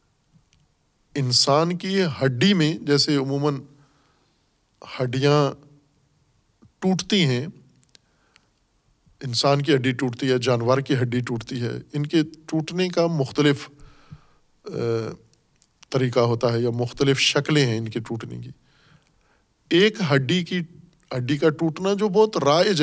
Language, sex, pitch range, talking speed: Urdu, male, 130-160 Hz, 115 wpm